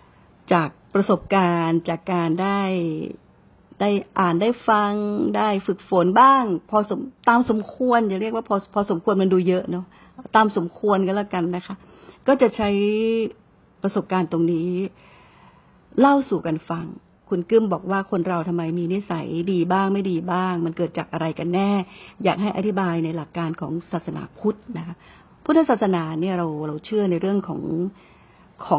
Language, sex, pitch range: Thai, female, 170-205 Hz